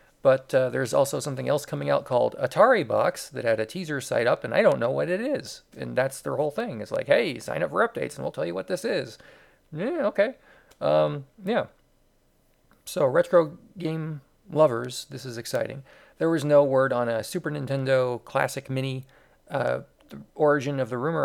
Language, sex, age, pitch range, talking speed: English, male, 40-59, 130-180 Hz, 195 wpm